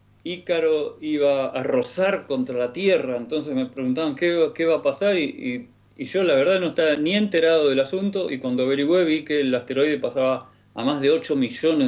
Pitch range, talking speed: 125-180 Hz, 195 wpm